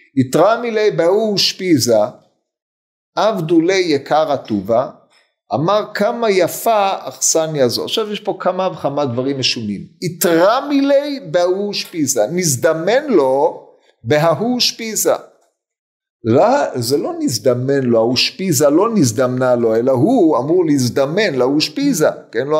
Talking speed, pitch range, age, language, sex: 105 wpm, 155-245 Hz, 50-69, Hebrew, male